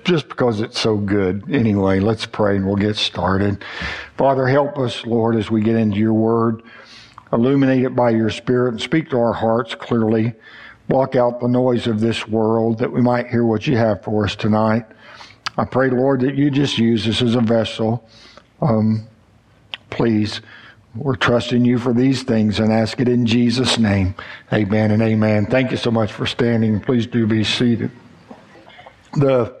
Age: 60-79